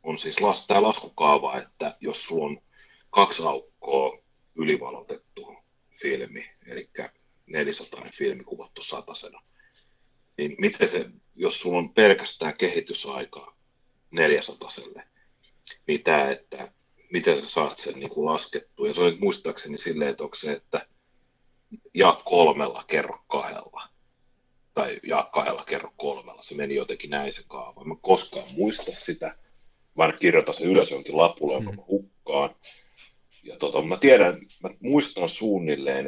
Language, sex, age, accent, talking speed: Finnish, male, 30-49, native, 120 wpm